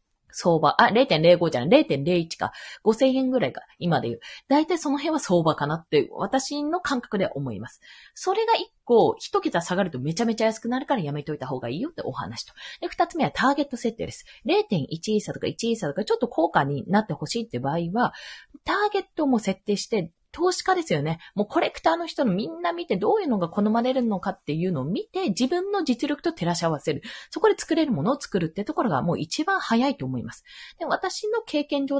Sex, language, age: female, Japanese, 20-39